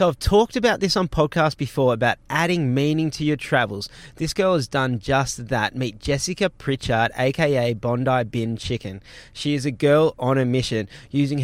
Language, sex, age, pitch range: English, male, 20-39, 120-155 Hz